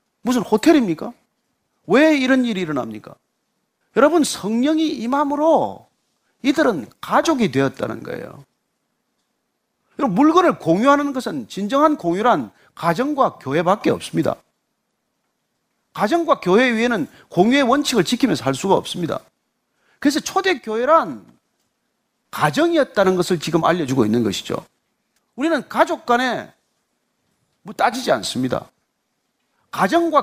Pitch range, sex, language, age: 195-295 Hz, male, Korean, 40-59